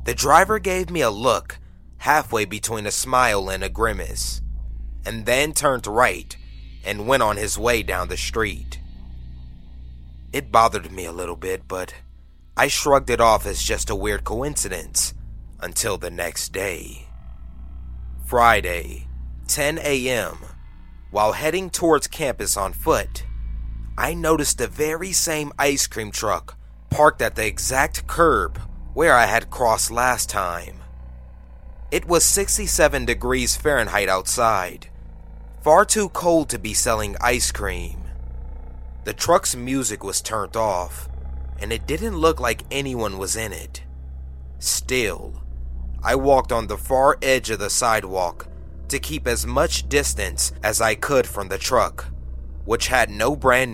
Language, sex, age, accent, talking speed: English, male, 30-49, American, 140 wpm